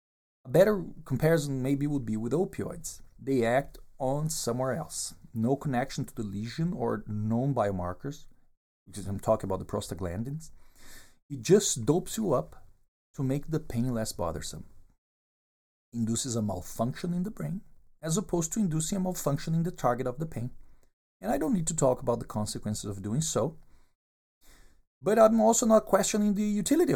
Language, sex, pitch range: English, male, 105-160 Hz